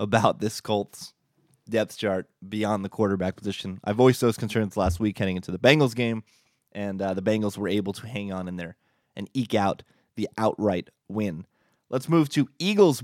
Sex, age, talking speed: male, 20-39, 190 wpm